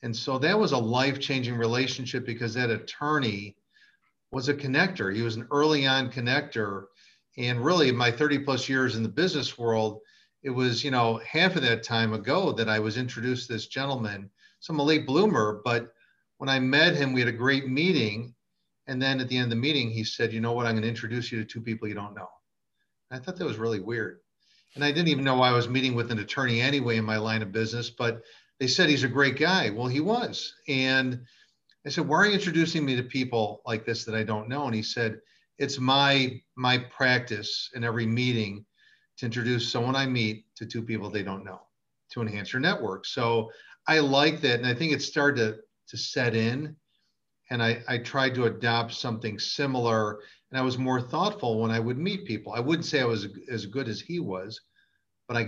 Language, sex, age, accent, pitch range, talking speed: English, male, 50-69, American, 115-135 Hz, 220 wpm